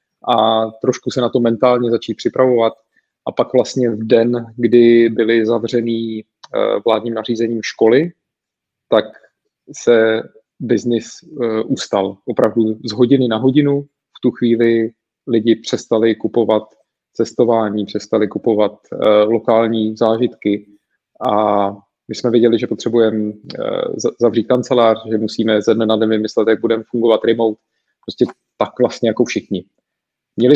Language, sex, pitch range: Czech, male, 110-125 Hz